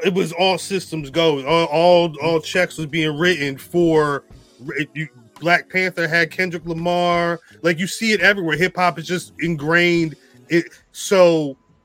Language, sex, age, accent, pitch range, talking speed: English, male, 30-49, American, 155-185 Hz, 155 wpm